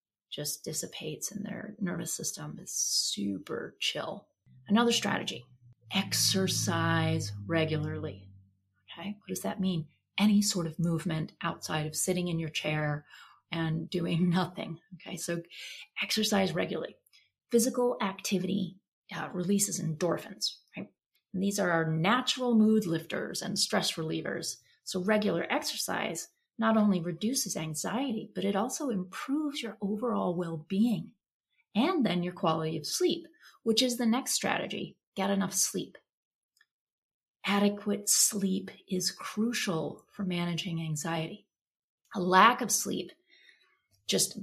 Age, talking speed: 30-49, 125 wpm